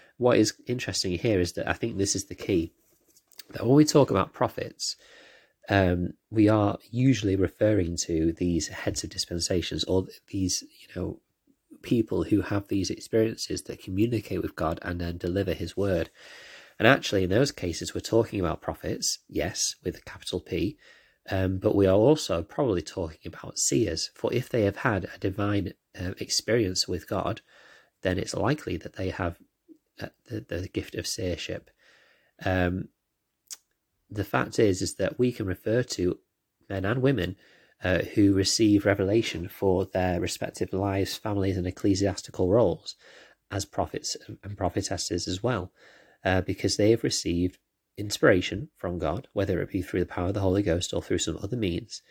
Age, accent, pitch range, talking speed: 30-49, British, 90-105 Hz, 170 wpm